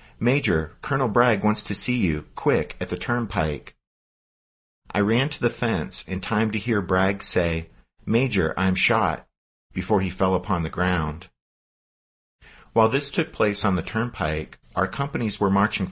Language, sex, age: English, male, 50-69